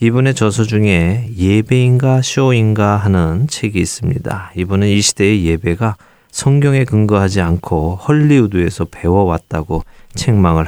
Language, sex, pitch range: Korean, male, 90-115 Hz